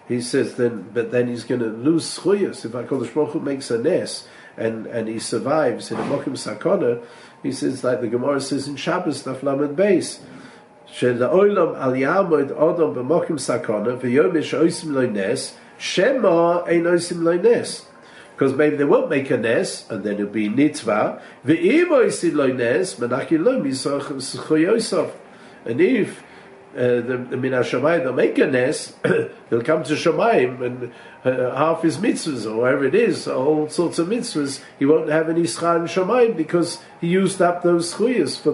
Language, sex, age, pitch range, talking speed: English, male, 50-69, 130-175 Hz, 170 wpm